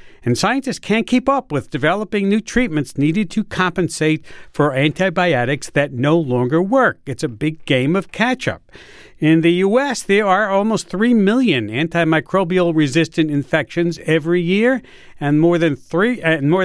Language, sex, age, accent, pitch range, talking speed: English, male, 50-69, American, 140-190 Hz, 145 wpm